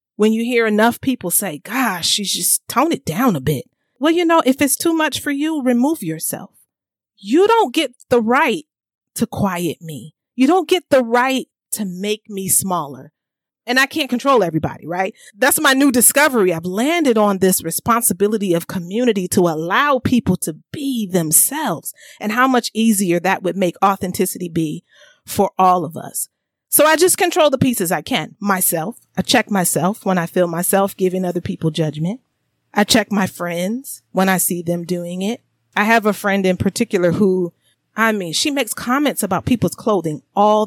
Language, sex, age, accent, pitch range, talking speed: English, female, 40-59, American, 180-260 Hz, 185 wpm